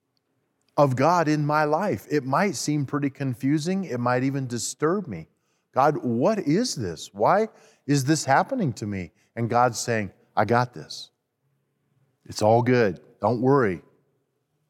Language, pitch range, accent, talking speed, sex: English, 120-155 Hz, American, 145 wpm, male